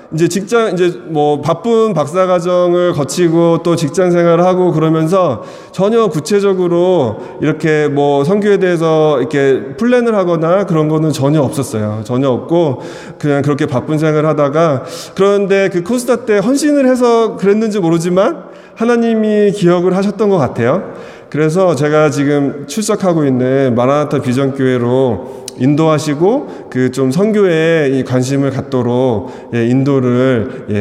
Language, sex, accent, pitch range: Korean, male, native, 140-195 Hz